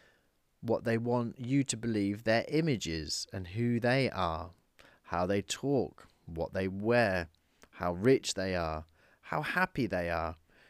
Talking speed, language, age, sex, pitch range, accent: 145 wpm, English, 30-49, male, 85-110 Hz, British